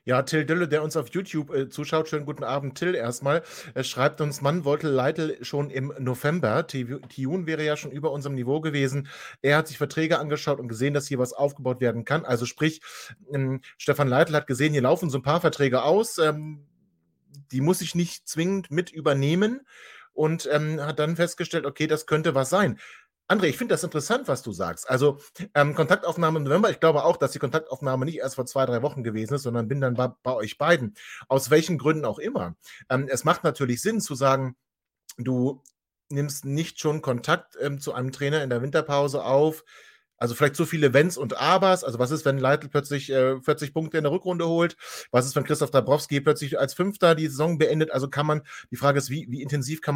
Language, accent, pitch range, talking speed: German, German, 130-155 Hz, 210 wpm